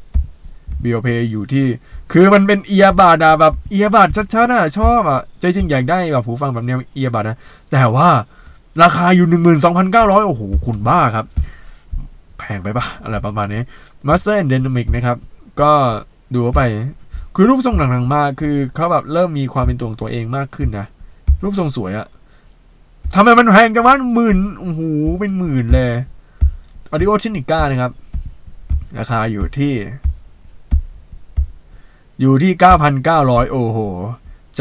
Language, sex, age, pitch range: Thai, male, 20-39, 105-155 Hz